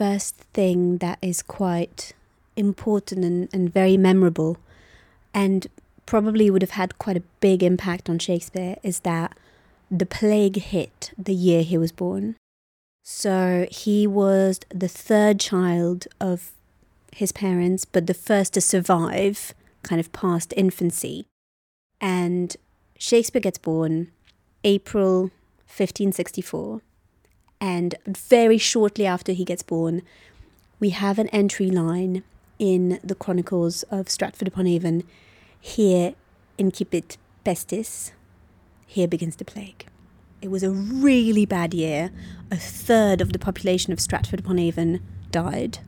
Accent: British